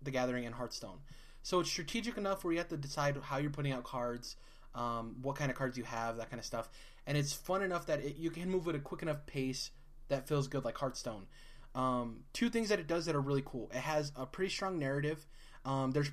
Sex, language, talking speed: male, English, 240 wpm